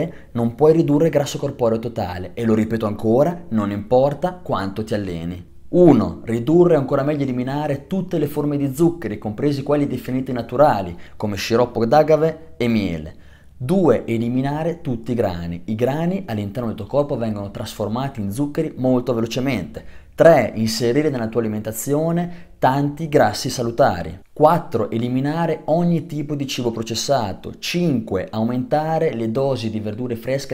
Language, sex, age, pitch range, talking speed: Italian, male, 20-39, 110-145 Hz, 145 wpm